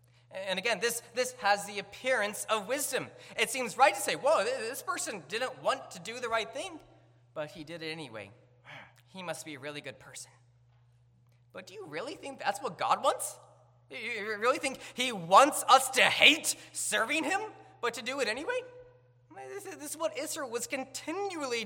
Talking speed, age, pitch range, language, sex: 185 wpm, 20-39, 150-240 Hz, English, male